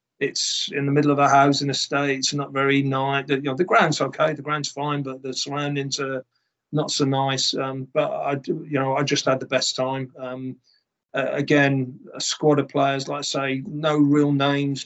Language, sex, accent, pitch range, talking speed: English, male, British, 130-145 Hz, 205 wpm